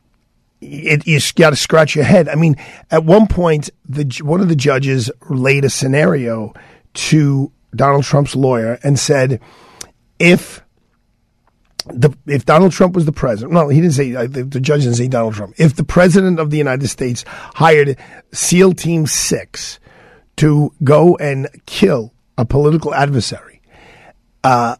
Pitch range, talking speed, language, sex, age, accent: 130-160 Hz, 155 wpm, English, male, 50-69, American